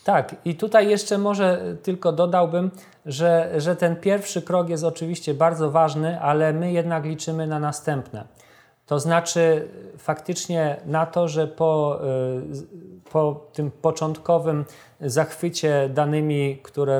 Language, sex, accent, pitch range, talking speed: Polish, male, native, 145-170 Hz, 125 wpm